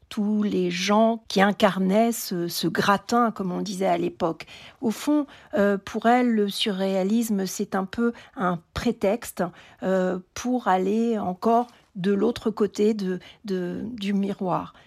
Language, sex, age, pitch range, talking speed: French, female, 50-69, 195-235 Hz, 145 wpm